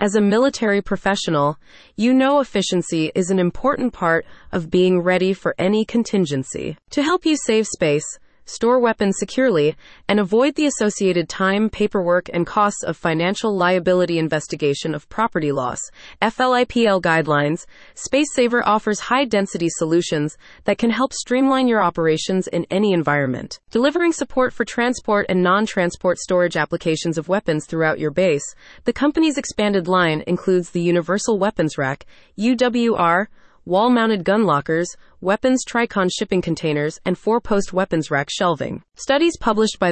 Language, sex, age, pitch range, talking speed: English, female, 30-49, 170-225 Hz, 145 wpm